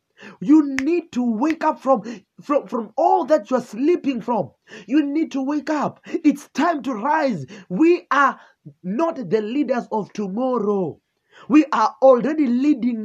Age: 30-49